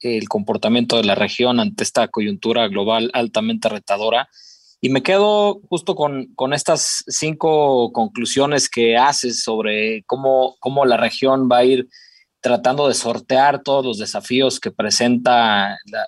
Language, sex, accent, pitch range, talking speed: Spanish, male, Mexican, 115-135 Hz, 145 wpm